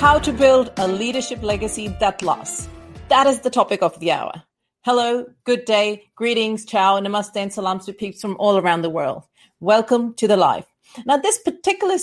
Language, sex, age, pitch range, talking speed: English, female, 40-59, 200-255 Hz, 185 wpm